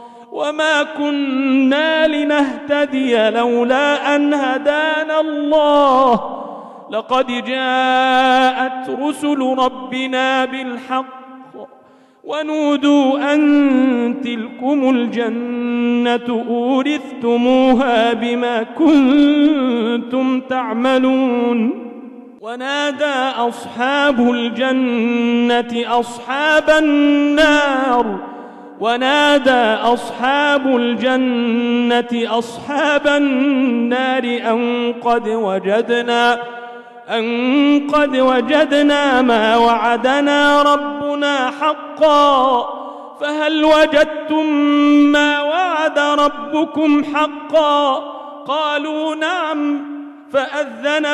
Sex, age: male, 40-59